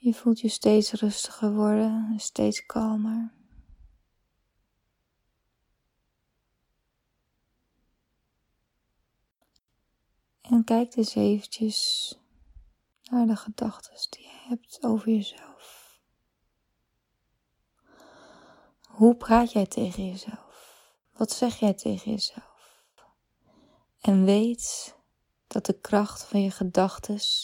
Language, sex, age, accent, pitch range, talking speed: Dutch, female, 20-39, Dutch, 200-230 Hz, 85 wpm